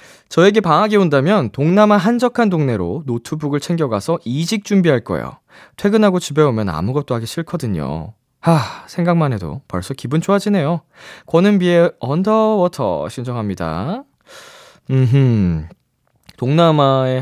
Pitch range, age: 110-175 Hz, 20-39